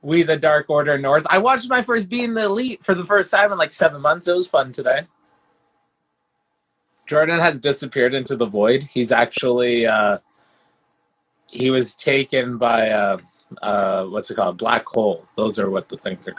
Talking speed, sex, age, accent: 175 wpm, male, 20-39, American